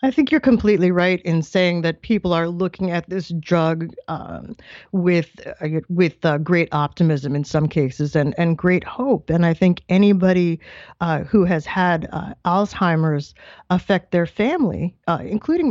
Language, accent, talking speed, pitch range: English, American, 165 wpm, 155-190 Hz